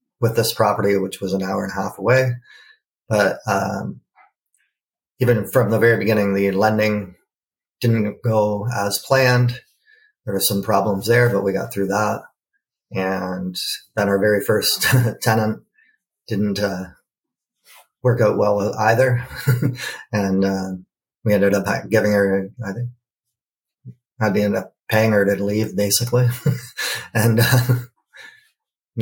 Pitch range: 100-120 Hz